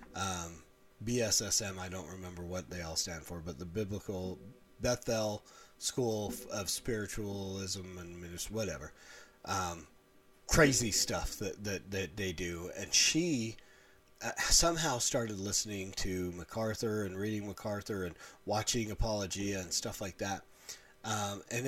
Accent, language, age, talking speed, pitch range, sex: American, English, 30-49, 130 wpm, 95-115 Hz, male